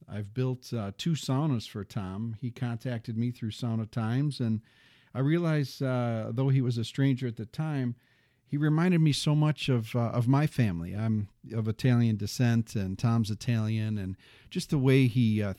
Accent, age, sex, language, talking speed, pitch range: American, 40-59, male, English, 185 wpm, 110-130 Hz